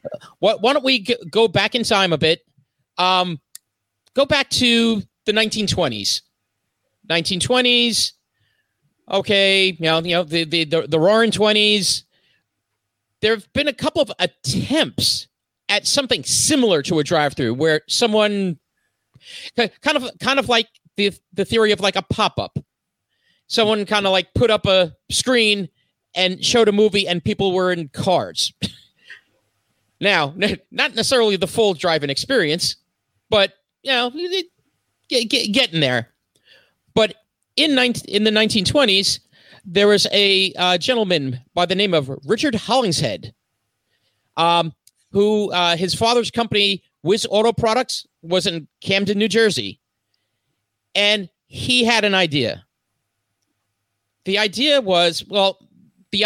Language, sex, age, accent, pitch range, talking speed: English, male, 40-59, American, 165-225 Hz, 135 wpm